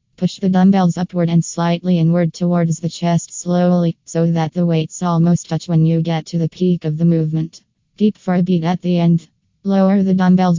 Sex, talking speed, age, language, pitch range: female, 205 wpm, 20-39, English, 160-175 Hz